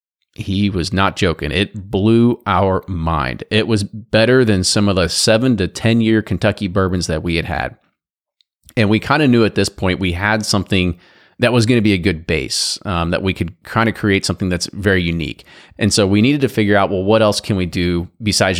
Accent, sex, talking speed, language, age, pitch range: American, male, 225 wpm, English, 30-49, 90-110 Hz